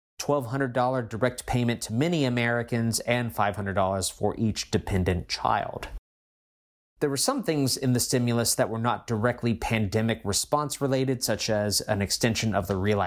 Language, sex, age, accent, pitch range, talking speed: English, male, 30-49, American, 100-130 Hz, 145 wpm